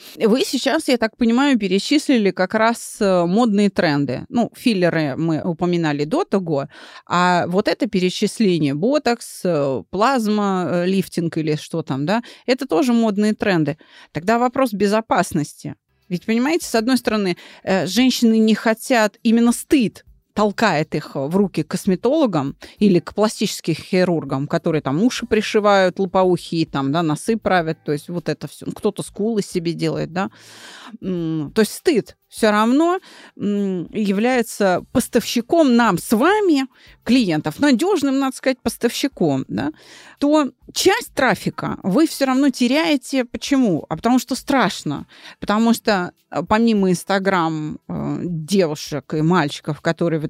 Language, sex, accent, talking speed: Russian, female, native, 130 wpm